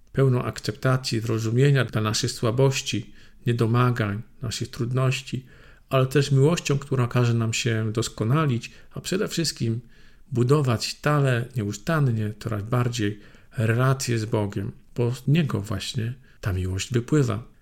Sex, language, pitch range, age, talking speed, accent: male, Polish, 110-130 Hz, 50-69, 120 wpm, native